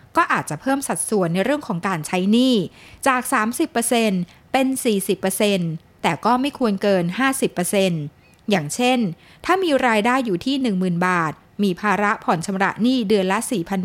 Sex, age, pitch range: female, 20-39, 195-250 Hz